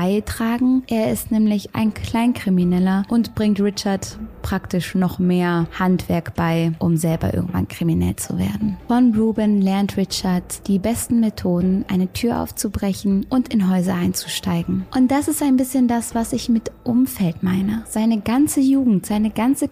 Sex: female